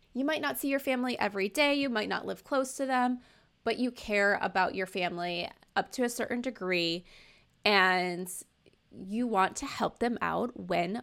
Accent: American